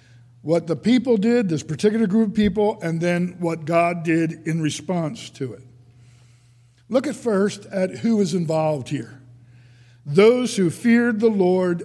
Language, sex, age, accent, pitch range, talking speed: English, male, 60-79, American, 125-195 Hz, 155 wpm